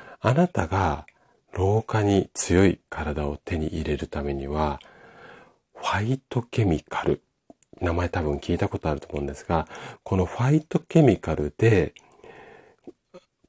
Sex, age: male, 40-59